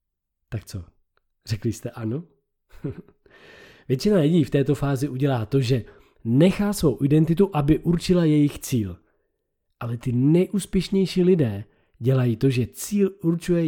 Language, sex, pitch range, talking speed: Czech, male, 110-160 Hz, 125 wpm